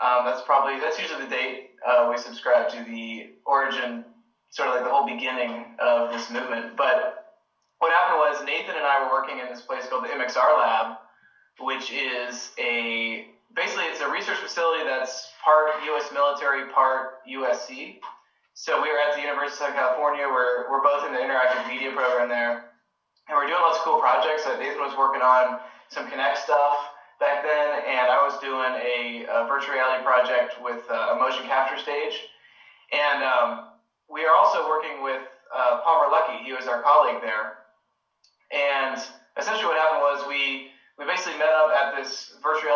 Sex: male